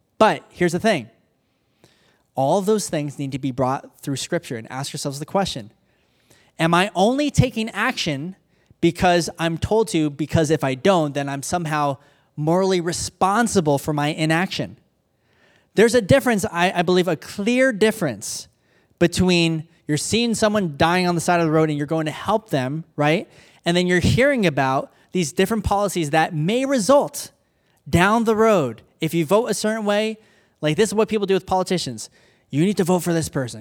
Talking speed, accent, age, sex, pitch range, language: 180 wpm, American, 20-39, male, 150-210 Hz, English